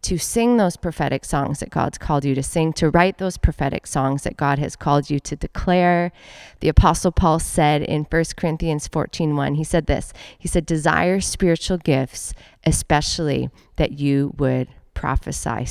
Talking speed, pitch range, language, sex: 170 wpm, 150-190 Hz, English, female